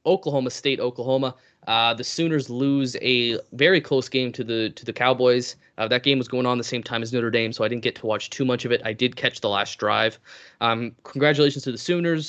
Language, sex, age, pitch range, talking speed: English, male, 20-39, 115-145 Hz, 245 wpm